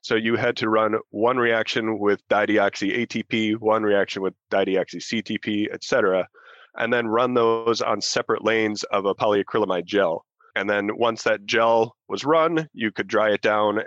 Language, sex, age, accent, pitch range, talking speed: English, male, 30-49, American, 100-115 Hz, 170 wpm